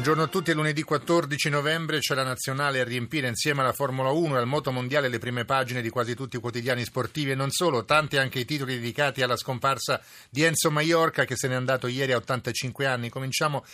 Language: Italian